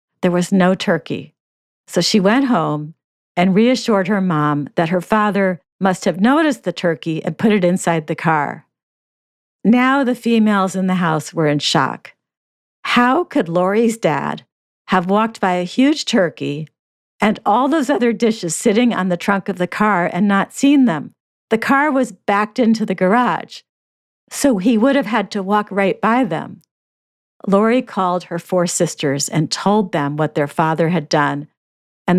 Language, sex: English, female